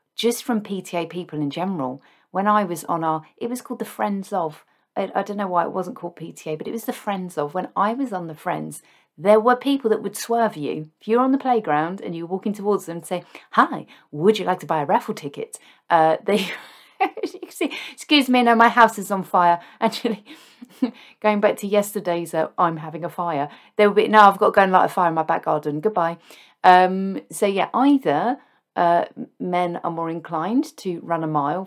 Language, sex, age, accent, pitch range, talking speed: English, female, 40-59, British, 170-225 Hz, 225 wpm